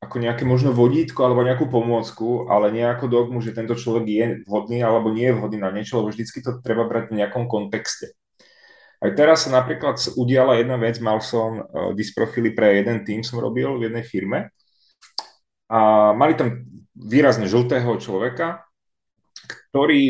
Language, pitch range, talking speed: Czech, 110-130 Hz, 160 wpm